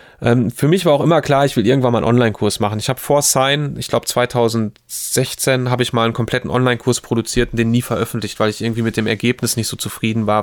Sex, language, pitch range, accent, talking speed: male, German, 115-130 Hz, German, 235 wpm